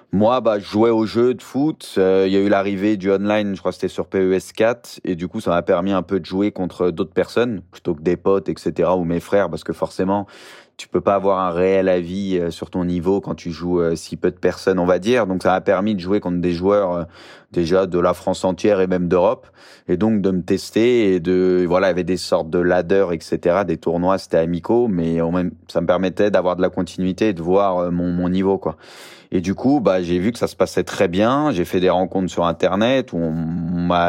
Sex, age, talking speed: male, 20-39, 245 wpm